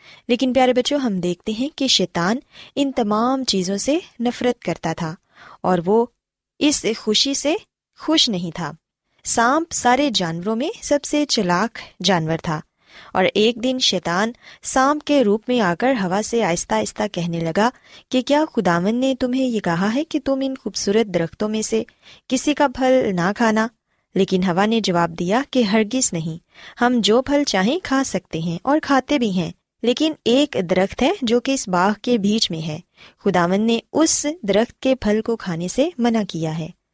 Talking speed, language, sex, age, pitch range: 180 wpm, Urdu, female, 20-39, 185-260 Hz